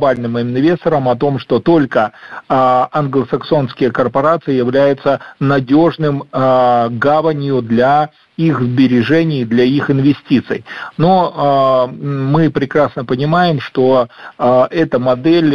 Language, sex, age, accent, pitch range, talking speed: Russian, male, 40-59, native, 125-150 Hz, 110 wpm